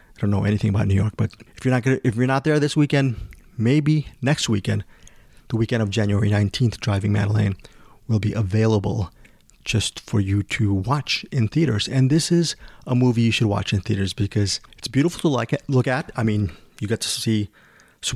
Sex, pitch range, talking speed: male, 105-130 Hz, 200 wpm